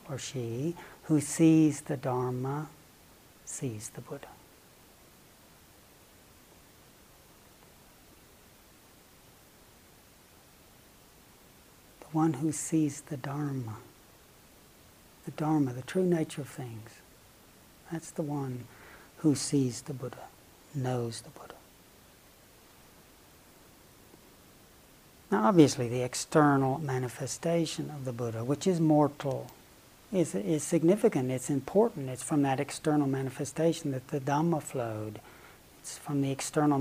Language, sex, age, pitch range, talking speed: English, male, 60-79, 130-155 Hz, 100 wpm